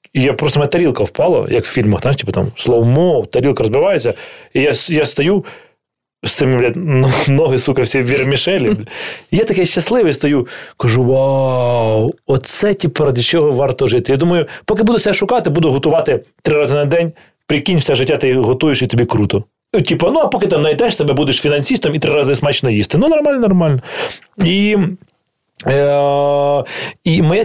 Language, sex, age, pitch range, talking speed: Ukrainian, male, 20-39, 135-175 Hz, 175 wpm